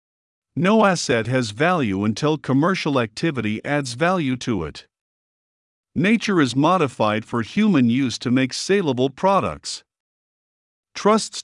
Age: 50-69